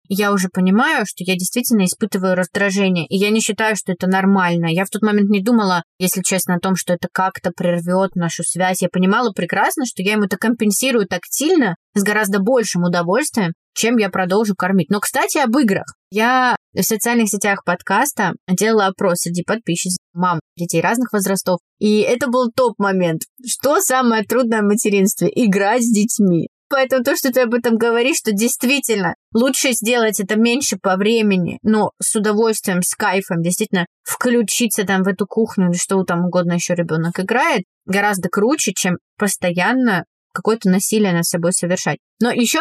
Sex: female